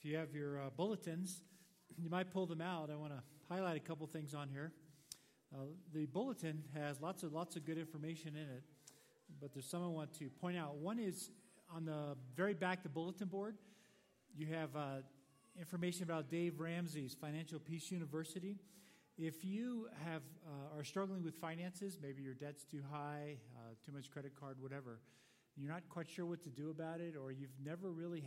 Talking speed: 195 wpm